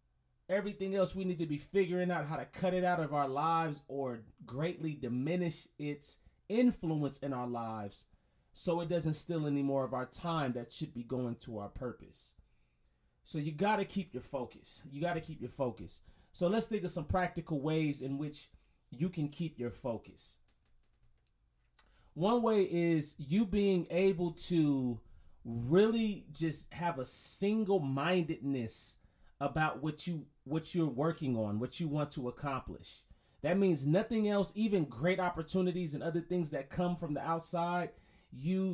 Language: English